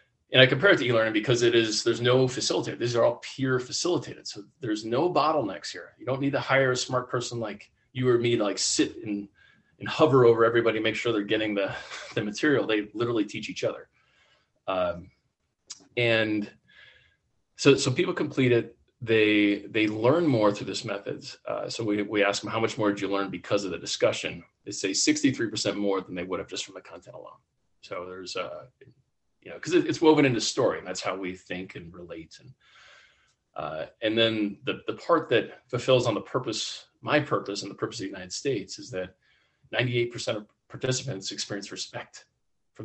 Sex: male